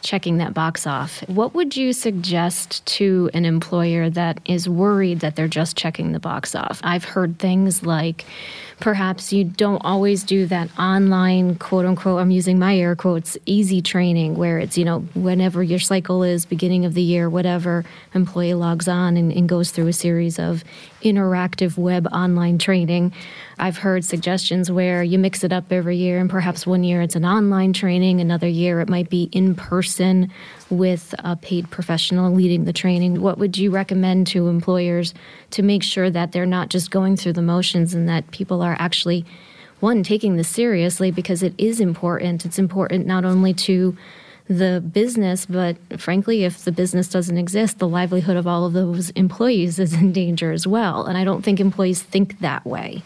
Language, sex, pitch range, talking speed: English, female, 175-190 Hz, 185 wpm